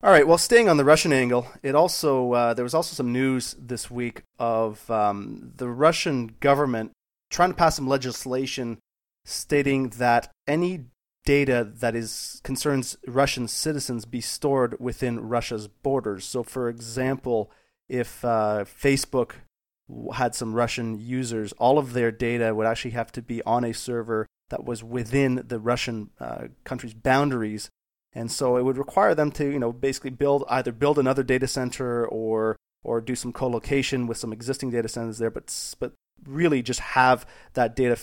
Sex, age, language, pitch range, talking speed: male, 30-49, English, 115-135 Hz, 165 wpm